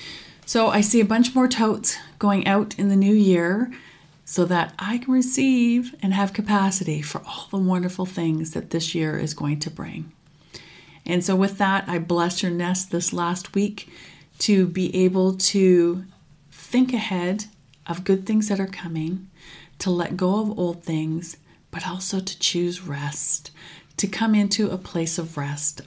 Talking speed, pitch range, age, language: 170 wpm, 160-200 Hz, 40-59, English